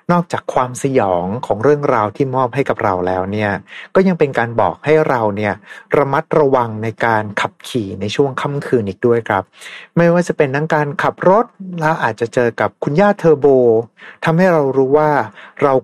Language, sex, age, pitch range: Thai, male, 60-79, 115-160 Hz